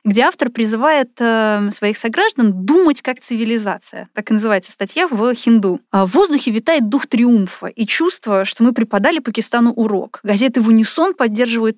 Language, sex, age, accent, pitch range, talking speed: Russian, female, 20-39, native, 210-270 Hz, 155 wpm